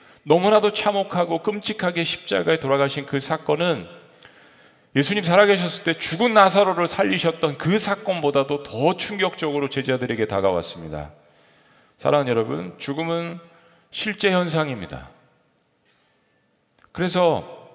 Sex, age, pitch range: male, 40-59, 145-190 Hz